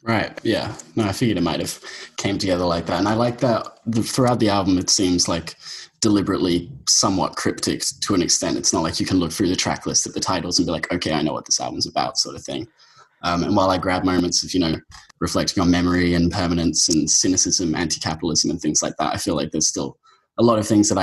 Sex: male